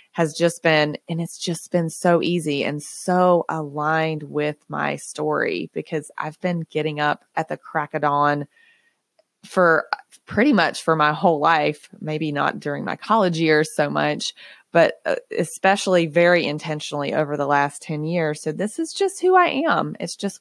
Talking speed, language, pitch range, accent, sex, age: 170 wpm, English, 155-195 Hz, American, female, 20-39